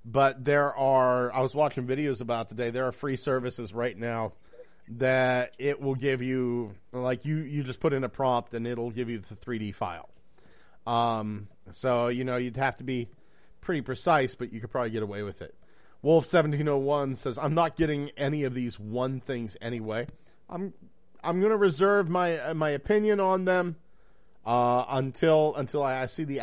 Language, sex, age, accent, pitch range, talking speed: English, male, 40-59, American, 120-155 Hz, 190 wpm